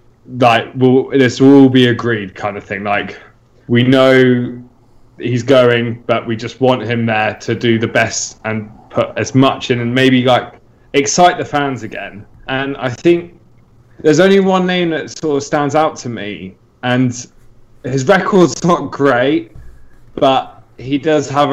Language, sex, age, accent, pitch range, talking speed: English, male, 20-39, British, 115-140 Hz, 165 wpm